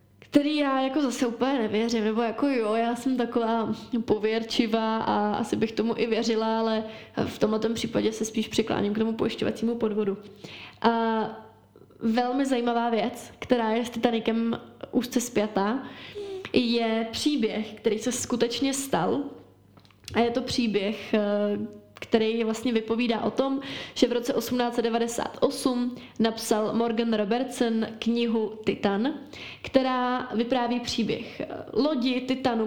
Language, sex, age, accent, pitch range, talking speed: Czech, female, 20-39, native, 220-250 Hz, 125 wpm